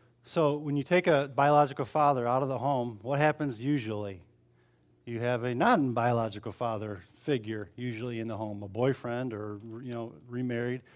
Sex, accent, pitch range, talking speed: male, American, 115-150 Hz, 170 wpm